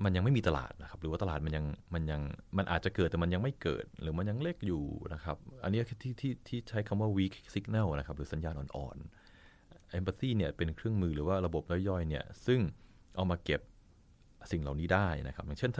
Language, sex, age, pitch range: Thai, male, 30-49, 80-105 Hz